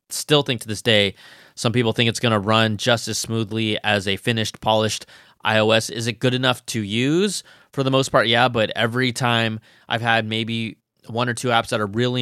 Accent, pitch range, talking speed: American, 110-145 Hz, 215 wpm